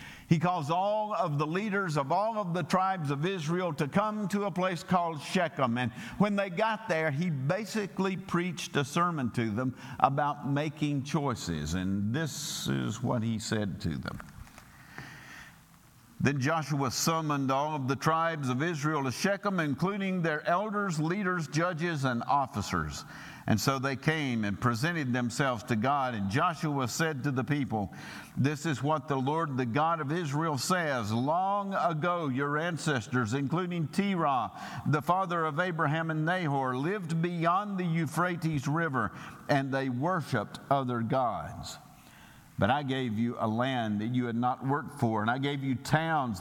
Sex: male